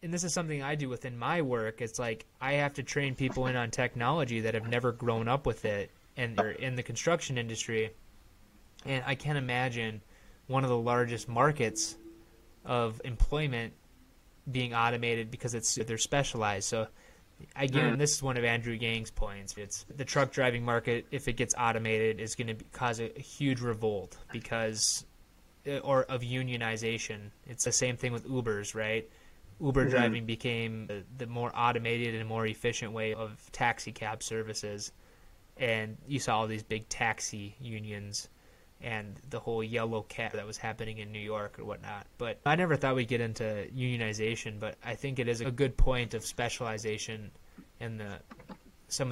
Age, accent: 20-39, American